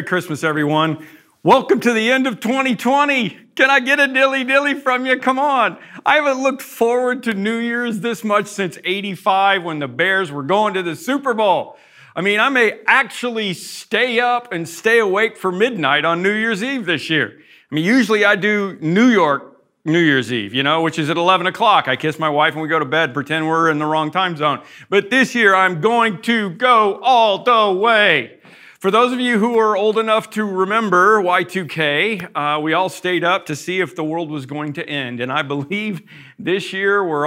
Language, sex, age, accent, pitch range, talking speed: English, male, 50-69, American, 145-215 Hz, 210 wpm